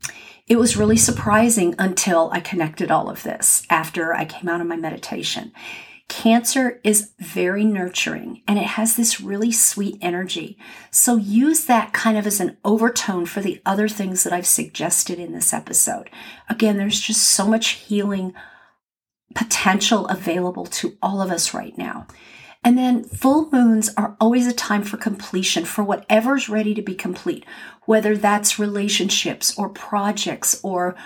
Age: 50-69